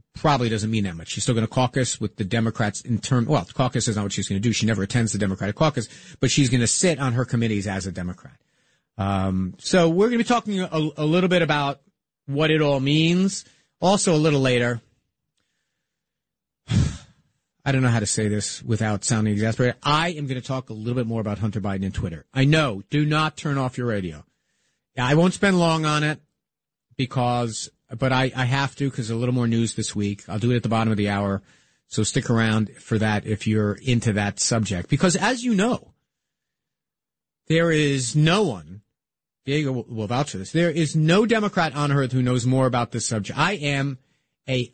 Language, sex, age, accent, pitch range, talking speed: English, male, 40-59, American, 110-150 Hz, 215 wpm